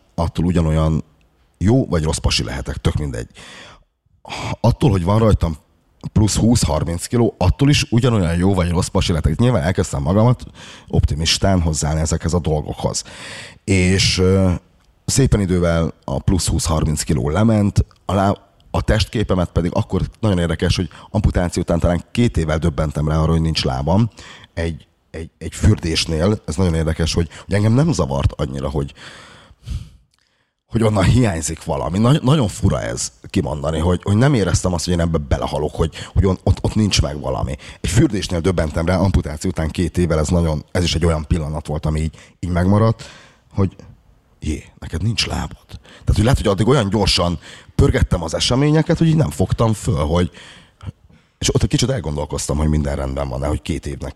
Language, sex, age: Hungarian, male, 30-49